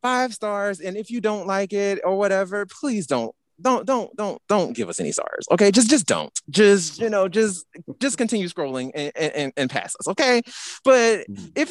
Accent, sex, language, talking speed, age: American, male, English, 200 wpm, 30-49